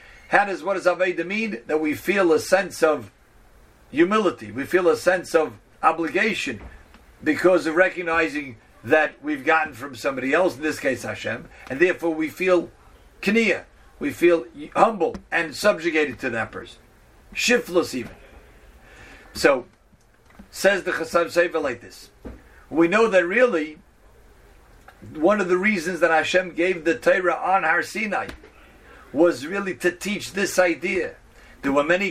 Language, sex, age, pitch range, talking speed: English, male, 50-69, 160-185 Hz, 150 wpm